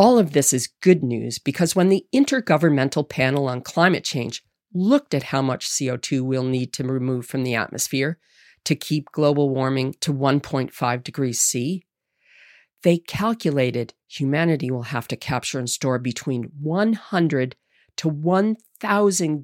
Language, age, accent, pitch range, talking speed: English, 40-59, American, 135-185 Hz, 145 wpm